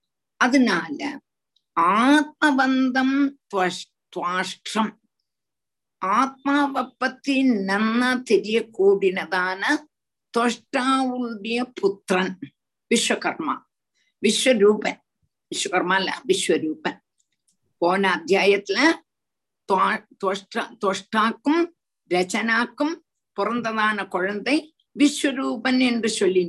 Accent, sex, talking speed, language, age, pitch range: native, female, 50 wpm, Tamil, 50-69, 200-280 Hz